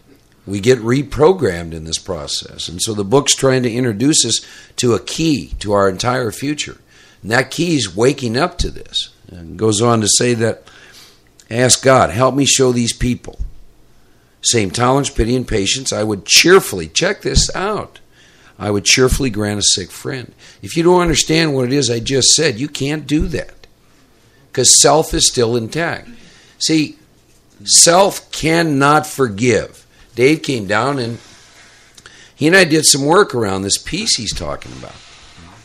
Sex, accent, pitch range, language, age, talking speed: male, American, 105-145 Hz, English, 50-69, 170 wpm